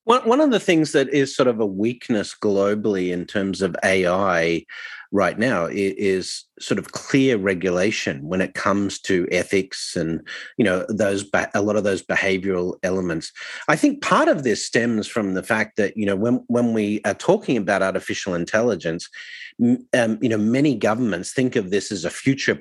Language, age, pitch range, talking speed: English, 40-59, 95-125 Hz, 185 wpm